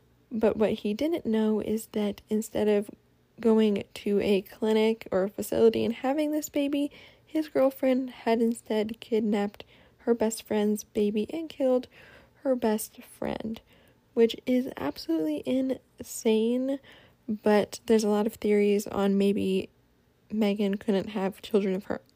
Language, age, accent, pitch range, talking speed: English, 10-29, American, 210-255 Hz, 140 wpm